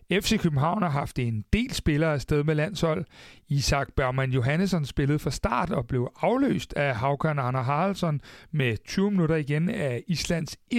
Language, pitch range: Danish, 135-180 Hz